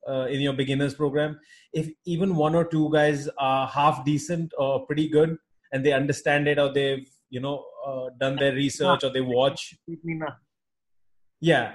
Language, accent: English, Indian